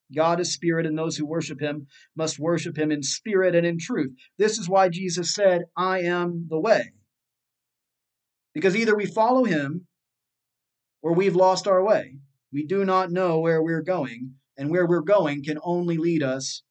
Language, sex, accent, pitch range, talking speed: English, male, American, 135-180 Hz, 180 wpm